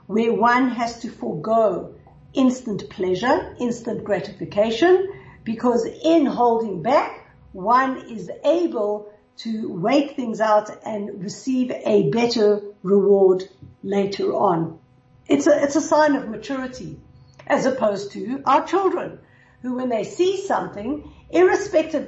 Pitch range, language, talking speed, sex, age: 205-270 Hz, English, 120 wpm, female, 50-69